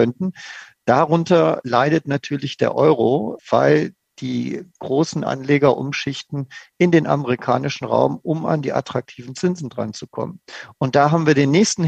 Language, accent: German, German